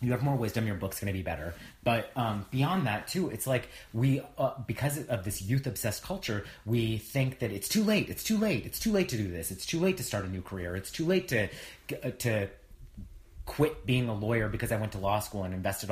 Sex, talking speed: male, 245 wpm